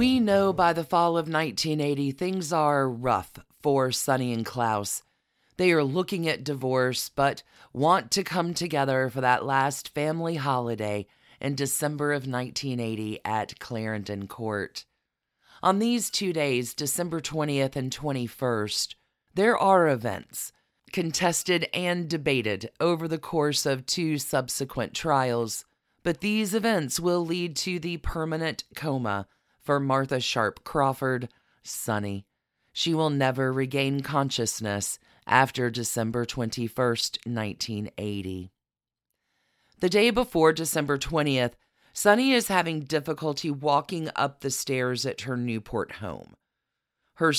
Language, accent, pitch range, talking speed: English, American, 125-170 Hz, 125 wpm